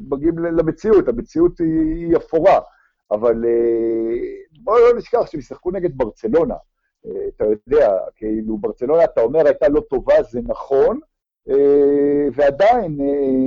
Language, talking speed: Hebrew, 110 wpm